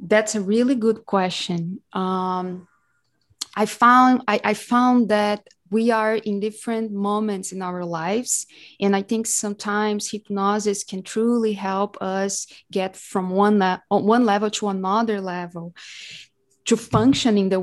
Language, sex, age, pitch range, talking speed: English, female, 20-39, 195-230 Hz, 145 wpm